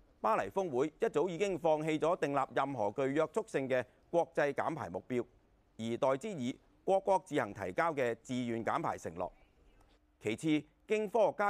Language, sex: Chinese, male